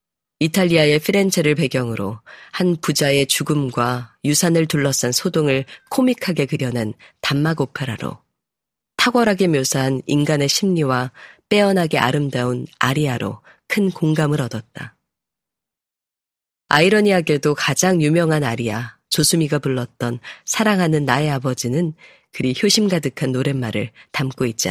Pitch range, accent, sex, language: 125-165 Hz, native, female, Korean